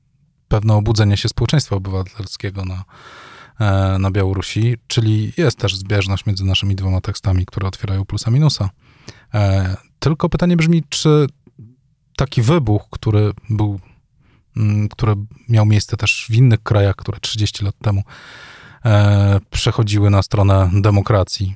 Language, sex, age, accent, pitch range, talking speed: Polish, male, 20-39, native, 100-125 Hz, 120 wpm